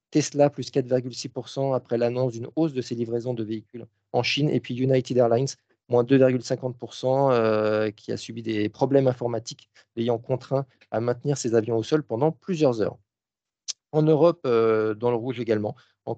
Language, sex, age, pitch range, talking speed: French, male, 40-59, 115-130 Hz, 165 wpm